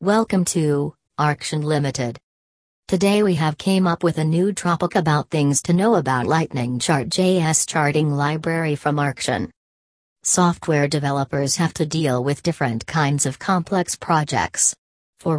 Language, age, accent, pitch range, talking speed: English, 40-59, American, 145-170 Hz, 145 wpm